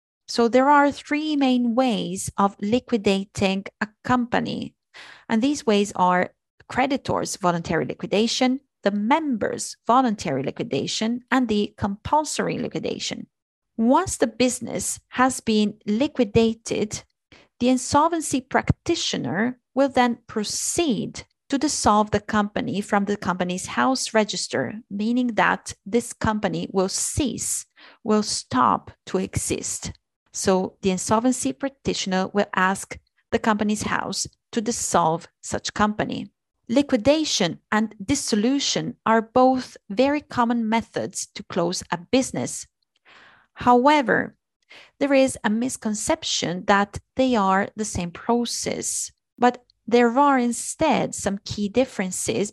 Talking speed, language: 115 wpm, Italian